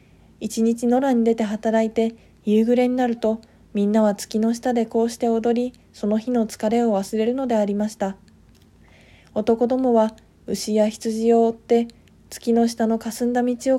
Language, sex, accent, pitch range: Japanese, female, native, 205-240 Hz